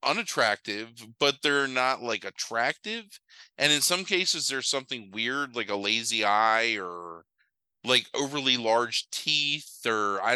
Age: 20-39